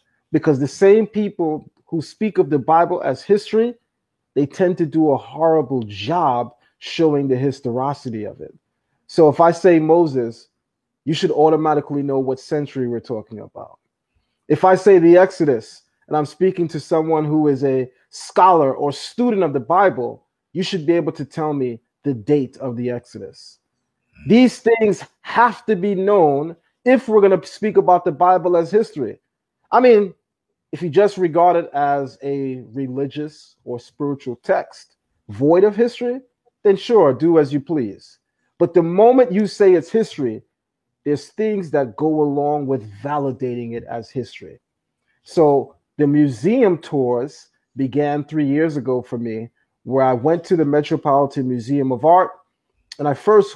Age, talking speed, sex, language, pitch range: 30-49, 160 wpm, male, English, 135-180 Hz